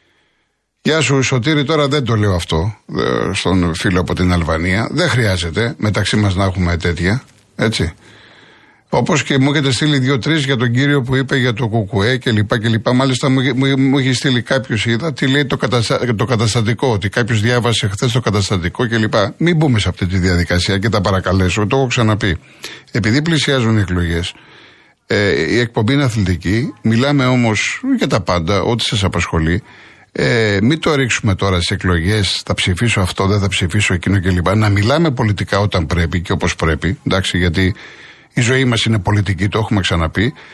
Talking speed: 180 wpm